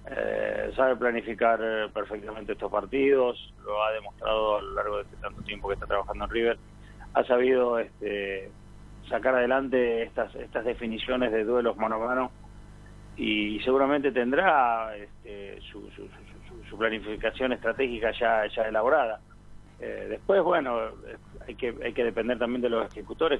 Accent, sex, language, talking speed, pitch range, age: Argentinian, male, Spanish, 150 wpm, 105-130 Hz, 30-49